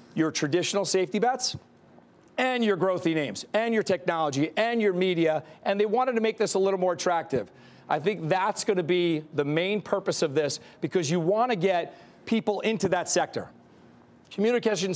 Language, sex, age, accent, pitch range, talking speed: English, male, 40-59, American, 165-205 Hz, 180 wpm